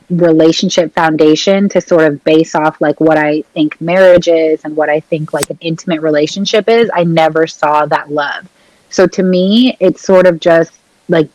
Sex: female